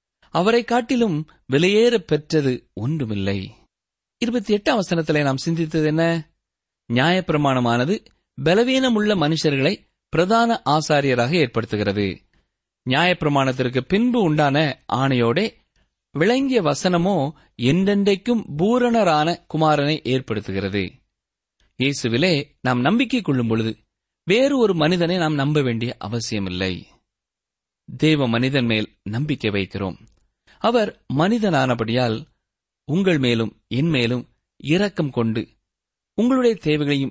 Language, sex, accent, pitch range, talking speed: Tamil, male, native, 120-180 Hz, 85 wpm